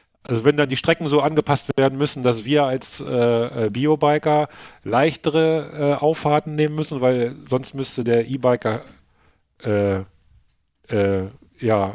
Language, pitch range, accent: German, 125-150 Hz, German